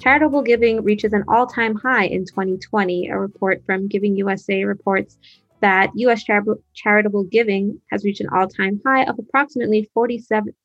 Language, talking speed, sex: English, 150 wpm, female